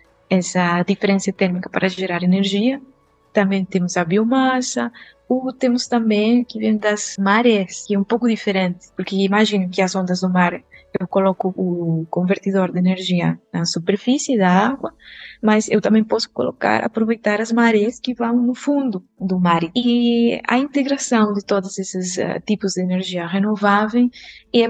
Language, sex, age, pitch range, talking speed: Portuguese, female, 20-39, 185-225 Hz, 160 wpm